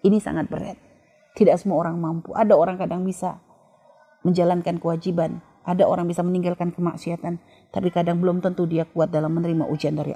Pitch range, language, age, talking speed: 160-215 Hz, Indonesian, 30-49, 165 wpm